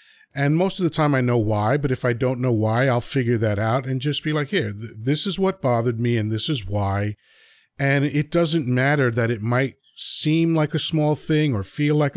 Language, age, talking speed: English, 40-59, 235 wpm